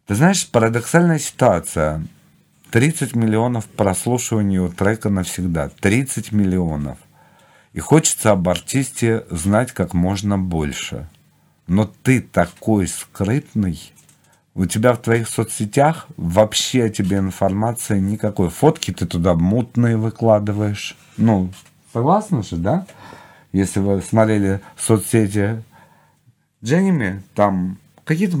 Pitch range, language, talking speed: 95-130 Hz, Russian, 110 wpm